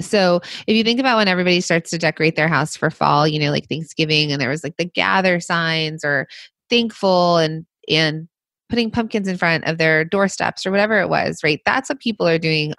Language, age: English, 20-39